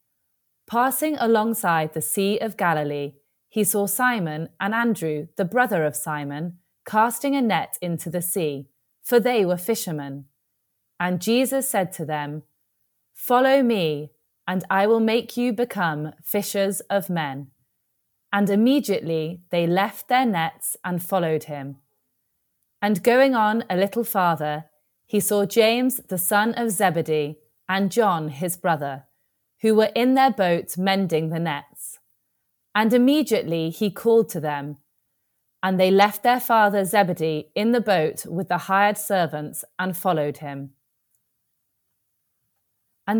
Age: 30-49